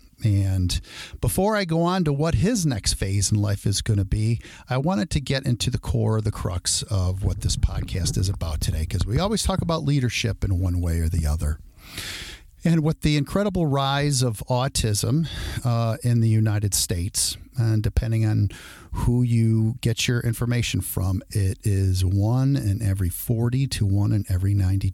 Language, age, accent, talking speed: English, 50-69, American, 185 wpm